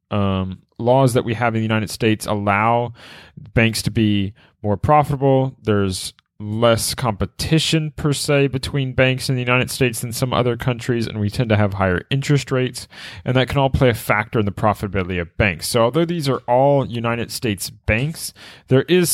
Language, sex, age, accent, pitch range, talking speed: English, male, 30-49, American, 105-135 Hz, 190 wpm